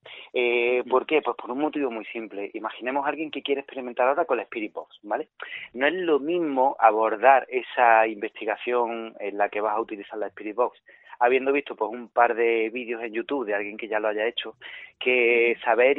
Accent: Spanish